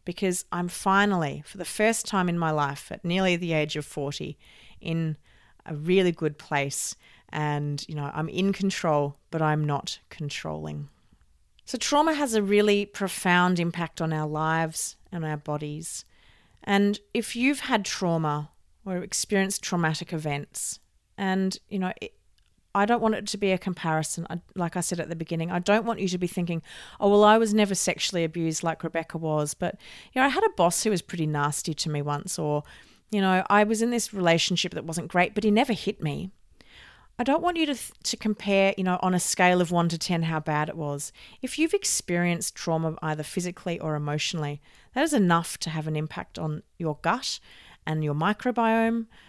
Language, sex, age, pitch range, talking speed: English, female, 40-59, 155-200 Hz, 195 wpm